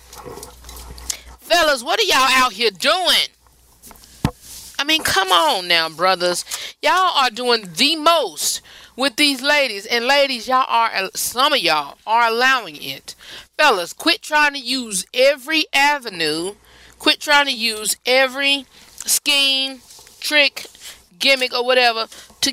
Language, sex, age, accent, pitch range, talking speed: English, female, 30-49, American, 210-280 Hz, 130 wpm